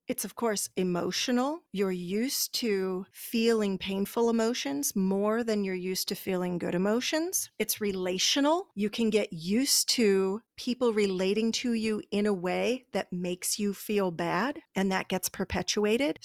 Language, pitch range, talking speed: English, 200-255 Hz, 150 wpm